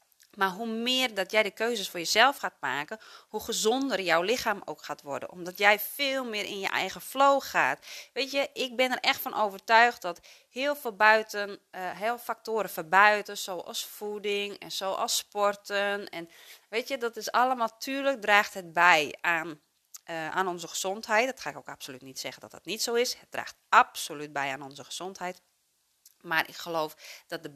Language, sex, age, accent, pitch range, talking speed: Dutch, female, 30-49, Dutch, 165-225 Hz, 185 wpm